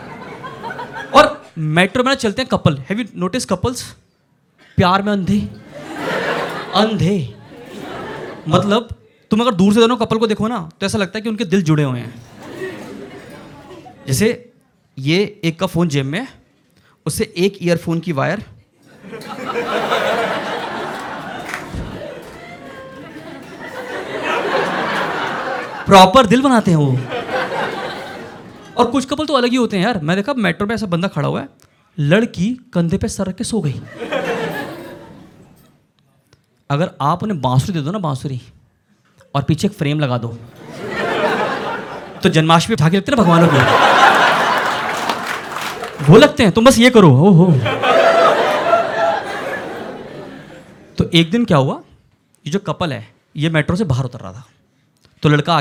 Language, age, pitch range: Hindi, 20-39, 150-220 Hz